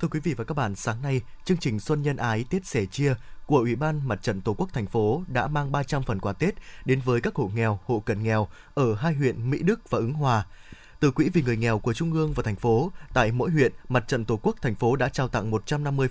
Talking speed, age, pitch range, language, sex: 265 wpm, 20-39, 115-150 Hz, Vietnamese, male